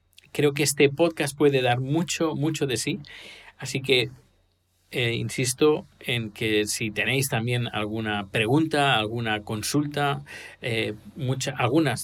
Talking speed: 130 wpm